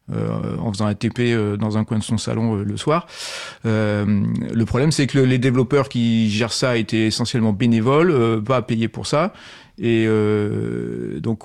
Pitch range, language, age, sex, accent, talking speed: 110-135 Hz, French, 40-59, male, French, 195 wpm